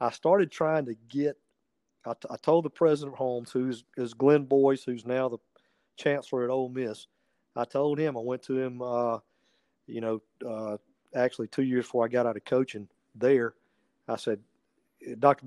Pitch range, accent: 120-145 Hz, American